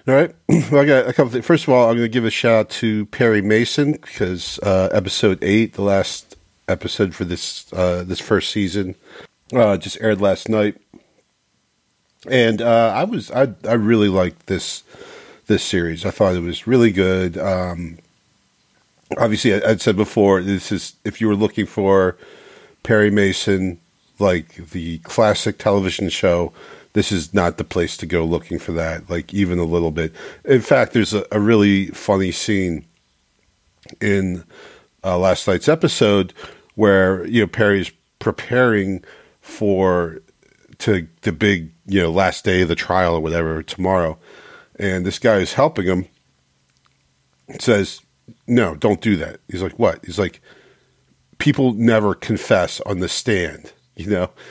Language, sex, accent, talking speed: English, male, American, 160 wpm